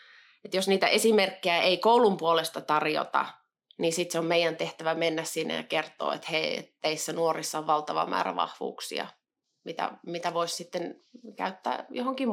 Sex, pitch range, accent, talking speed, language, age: female, 165-220 Hz, native, 145 wpm, Finnish, 20-39